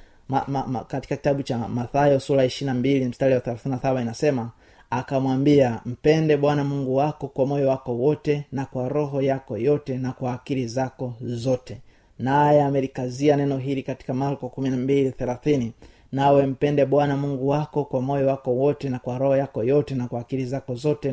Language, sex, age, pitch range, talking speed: Swahili, male, 30-49, 125-145 Hz, 160 wpm